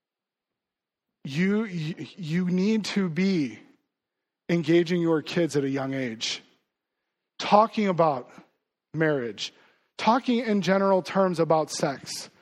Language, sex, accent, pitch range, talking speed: English, male, American, 175-200 Hz, 100 wpm